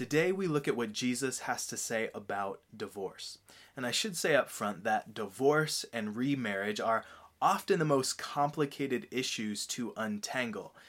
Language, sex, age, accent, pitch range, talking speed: English, male, 20-39, American, 115-150 Hz, 160 wpm